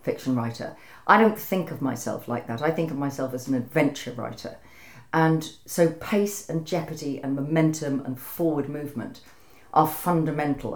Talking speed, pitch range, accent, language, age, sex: 160 wpm, 130-165 Hz, British, English, 40-59, female